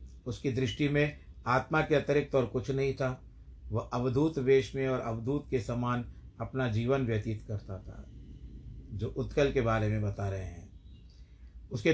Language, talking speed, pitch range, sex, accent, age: Hindi, 160 wpm, 110-140 Hz, male, native, 50-69